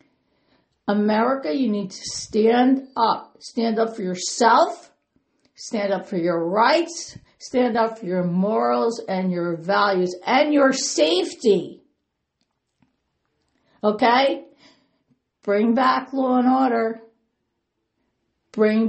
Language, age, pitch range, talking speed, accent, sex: English, 60-79, 180-235 Hz, 105 wpm, American, female